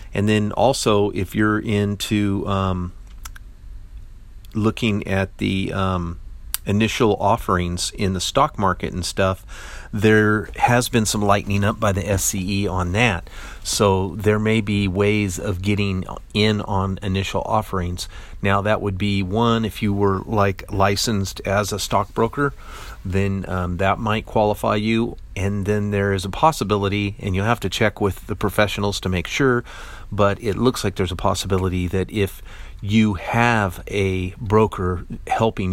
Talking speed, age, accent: 155 wpm, 40-59, American